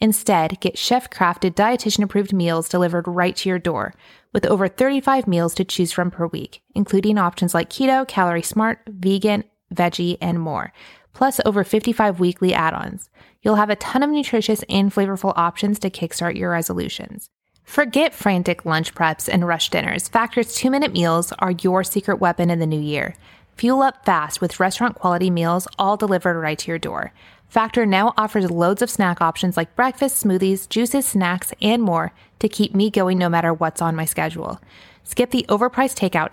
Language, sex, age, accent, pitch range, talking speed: English, female, 20-39, American, 175-225 Hz, 175 wpm